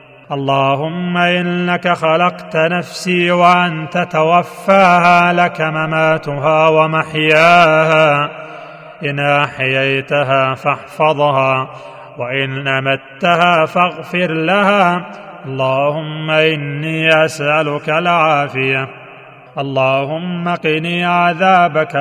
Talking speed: 65 wpm